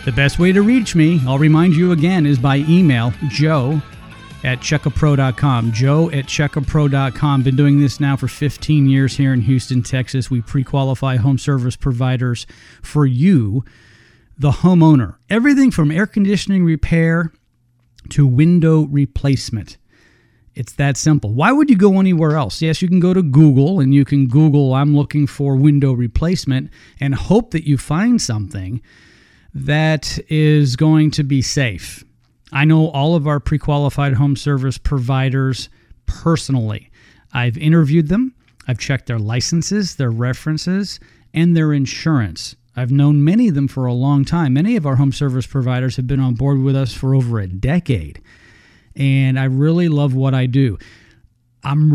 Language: English